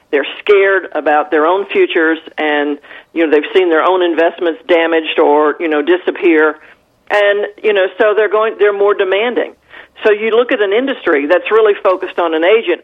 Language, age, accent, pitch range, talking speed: English, 40-59, American, 170-270 Hz, 185 wpm